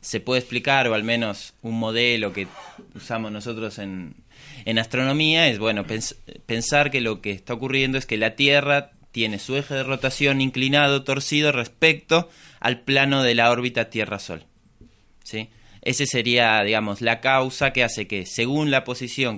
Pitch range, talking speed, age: 105-135 Hz, 165 wpm, 20-39